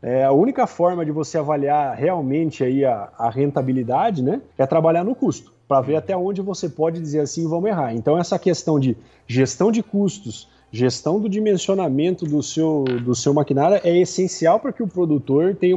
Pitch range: 140-180 Hz